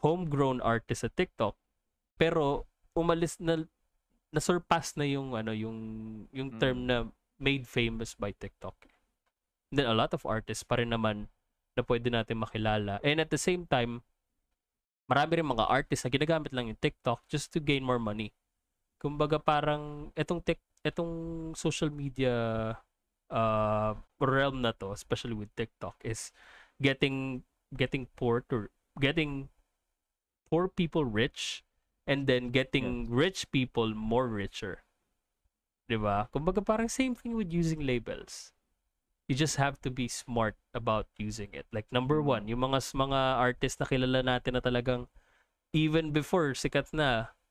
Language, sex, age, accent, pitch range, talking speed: Filipino, male, 20-39, native, 110-145 Hz, 140 wpm